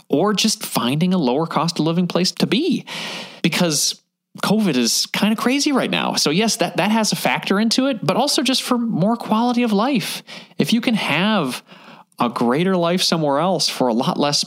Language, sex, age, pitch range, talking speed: English, male, 30-49, 180-230 Hz, 205 wpm